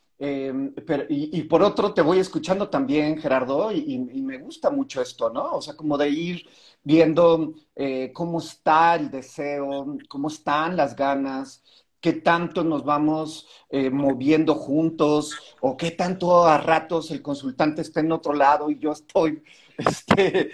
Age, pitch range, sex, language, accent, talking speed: 40-59, 145-175 Hz, male, Spanish, Mexican, 160 wpm